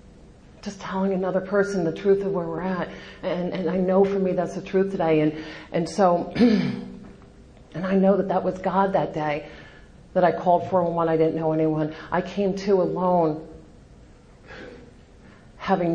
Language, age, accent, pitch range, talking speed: English, 40-59, American, 165-190 Hz, 175 wpm